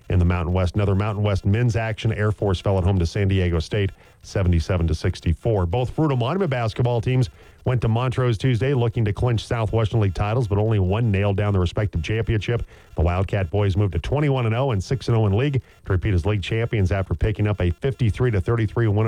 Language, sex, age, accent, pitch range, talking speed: English, male, 40-59, American, 95-115 Hz, 215 wpm